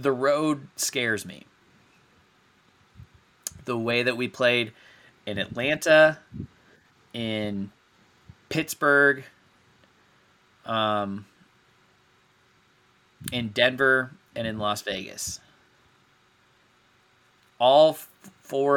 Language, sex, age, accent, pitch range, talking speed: English, male, 20-39, American, 105-130 Hz, 70 wpm